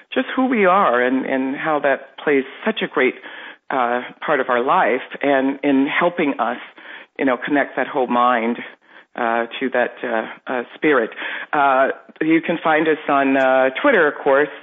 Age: 50-69